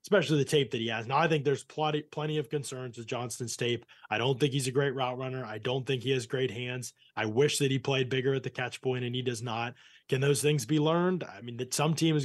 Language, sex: English, male